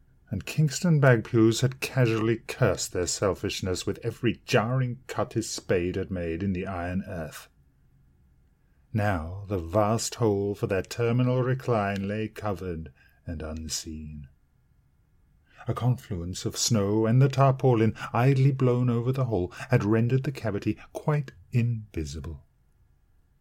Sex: male